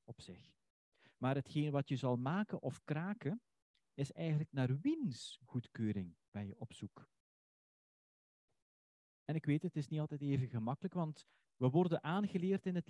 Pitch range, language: 105-150 Hz, Dutch